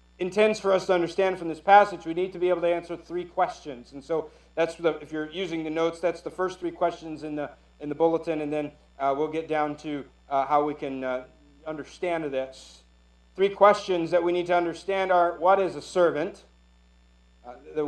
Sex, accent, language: male, American, English